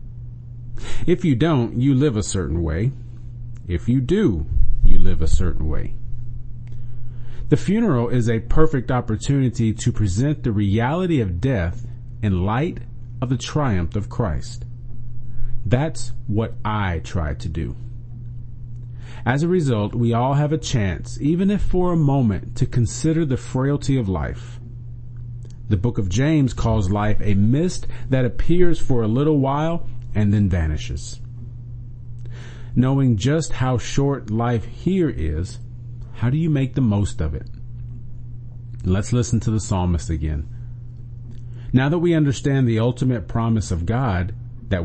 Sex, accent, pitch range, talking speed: male, American, 115-130 Hz, 145 wpm